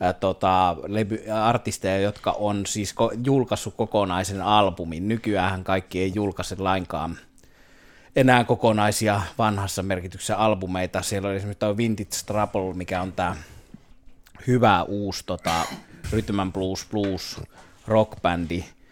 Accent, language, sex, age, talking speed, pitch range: native, Finnish, male, 30-49, 110 wpm, 90-110 Hz